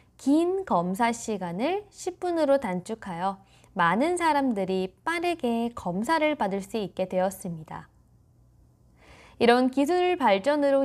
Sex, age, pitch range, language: female, 20-39, 195-290 Hz, Korean